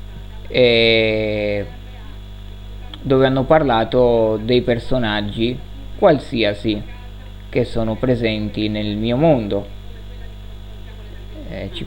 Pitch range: 105-120 Hz